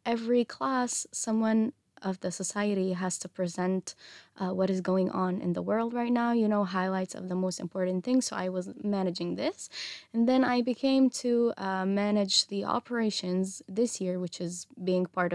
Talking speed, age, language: 185 wpm, 20-39, Hebrew